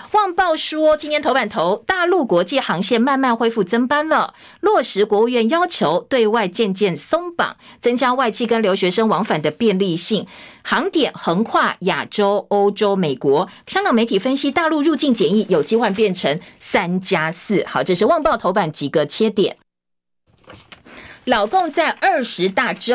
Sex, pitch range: female, 185-265 Hz